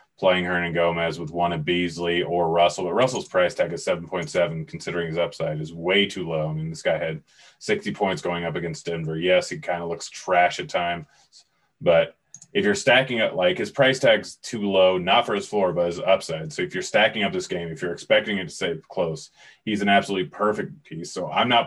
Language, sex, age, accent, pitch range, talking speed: English, male, 30-49, American, 85-100 Hz, 225 wpm